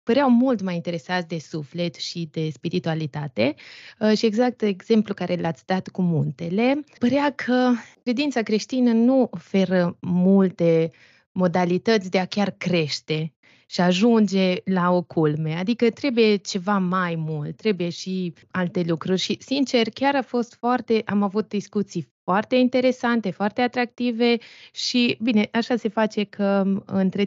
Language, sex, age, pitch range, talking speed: Romanian, female, 20-39, 180-220 Hz, 140 wpm